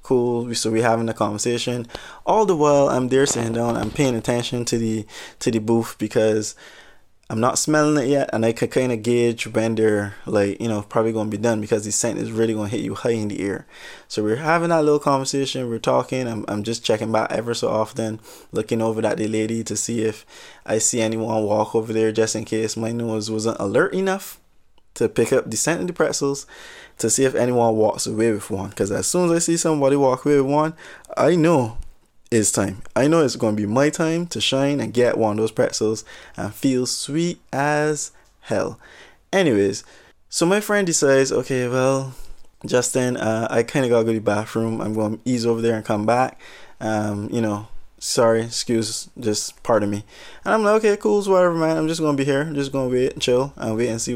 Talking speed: 220 wpm